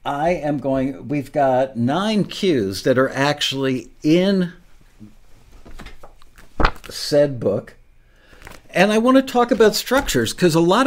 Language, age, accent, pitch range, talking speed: English, 60-79, American, 115-145 Hz, 125 wpm